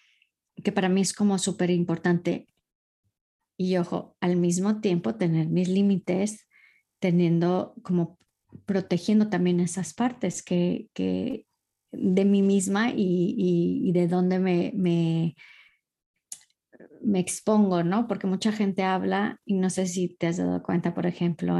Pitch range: 175-200 Hz